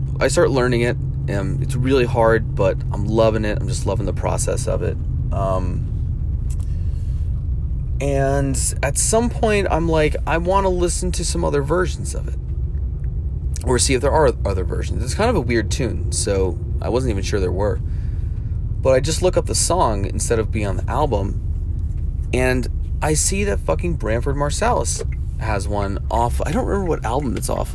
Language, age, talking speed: English, 30-49, 185 wpm